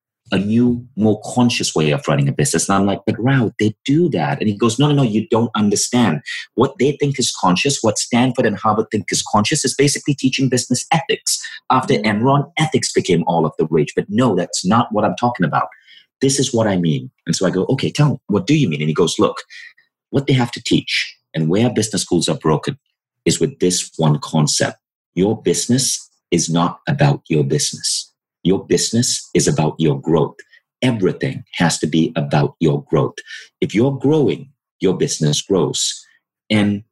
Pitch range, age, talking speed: 95-130 Hz, 30-49, 200 wpm